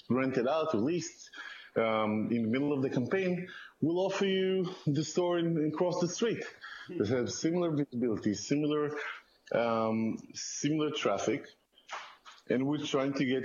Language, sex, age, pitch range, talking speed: English, male, 20-39, 110-145 Hz, 155 wpm